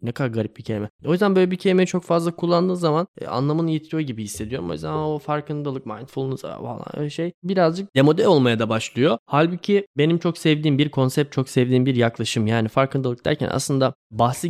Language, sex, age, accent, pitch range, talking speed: Turkish, male, 10-29, native, 115-150 Hz, 195 wpm